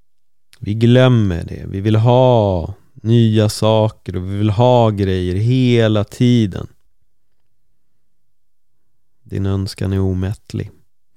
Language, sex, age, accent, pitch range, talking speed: Swedish, male, 30-49, native, 95-120 Hz, 100 wpm